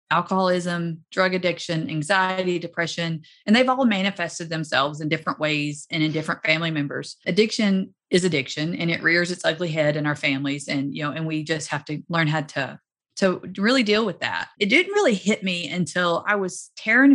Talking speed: 190 wpm